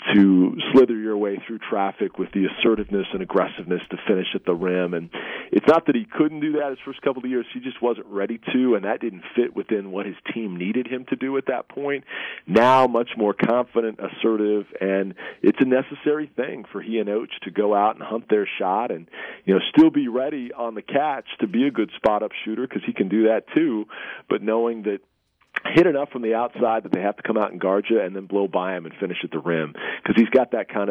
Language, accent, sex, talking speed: English, American, male, 240 wpm